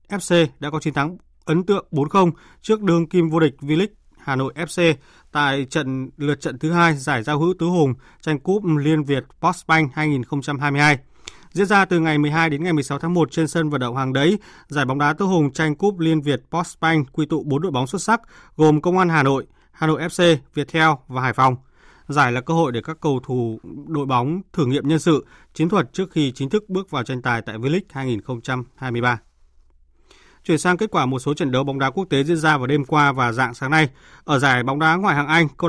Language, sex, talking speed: Vietnamese, male, 230 wpm